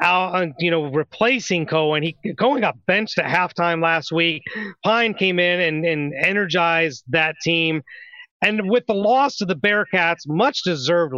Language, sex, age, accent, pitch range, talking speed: English, male, 30-49, American, 155-195 Hz, 155 wpm